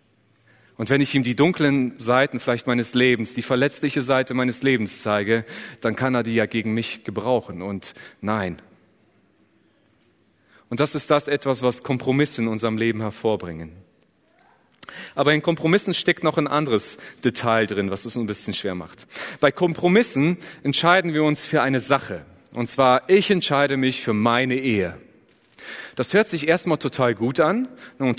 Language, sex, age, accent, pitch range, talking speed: German, male, 30-49, German, 120-155 Hz, 160 wpm